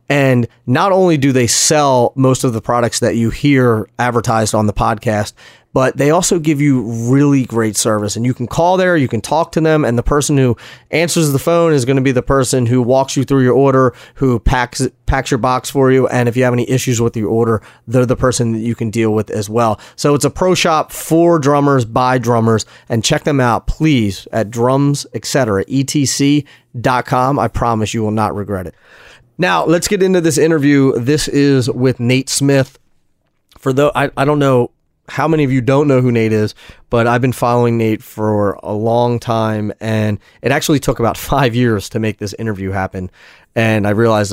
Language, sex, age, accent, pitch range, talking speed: English, male, 30-49, American, 110-135 Hz, 210 wpm